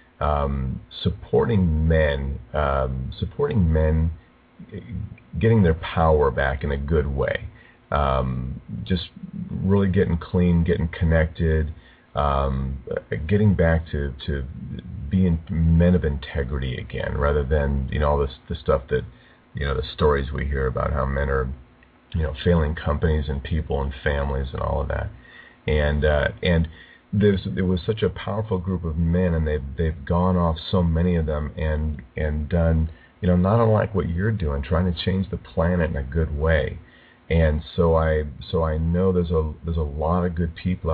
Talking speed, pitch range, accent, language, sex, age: 170 wpm, 75-90 Hz, American, English, male, 40-59